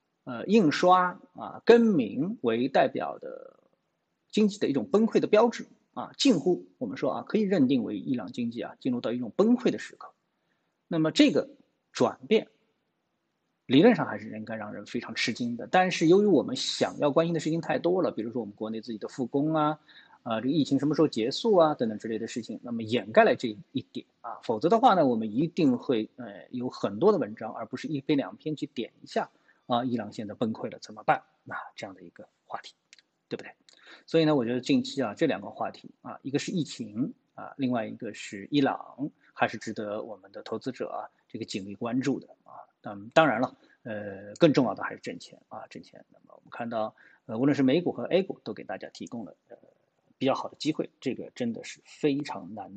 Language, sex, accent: Chinese, male, native